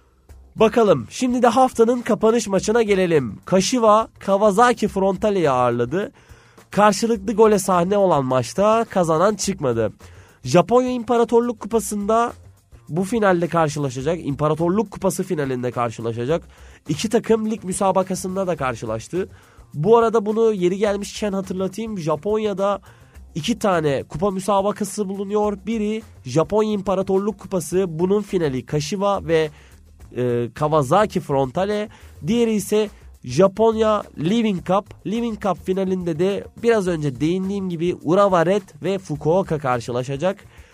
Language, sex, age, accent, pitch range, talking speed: Turkish, male, 30-49, native, 140-210 Hz, 110 wpm